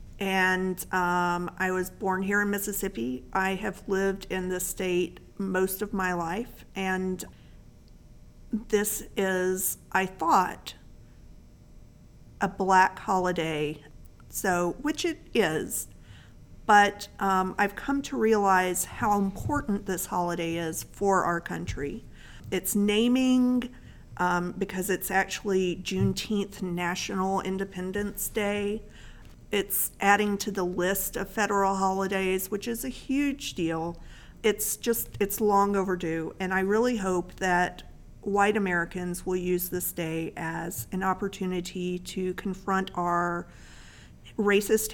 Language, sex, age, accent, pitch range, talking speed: English, female, 50-69, American, 180-205 Hz, 120 wpm